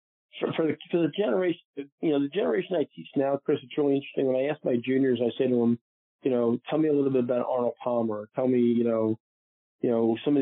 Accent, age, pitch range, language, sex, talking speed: American, 40-59, 115-140 Hz, English, male, 255 wpm